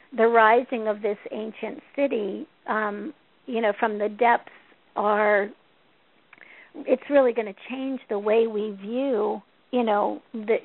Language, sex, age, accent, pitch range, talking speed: English, female, 50-69, American, 215-260 Hz, 140 wpm